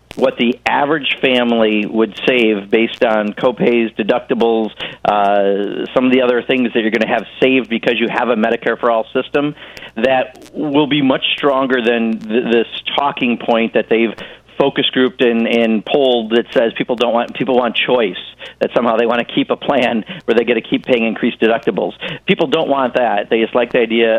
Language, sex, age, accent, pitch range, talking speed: English, male, 50-69, American, 115-130 Hz, 195 wpm